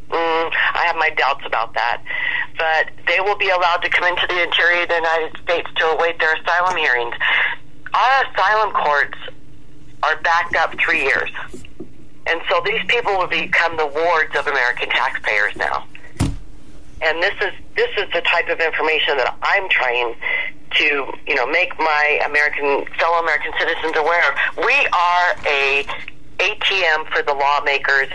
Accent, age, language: American, 40-59, English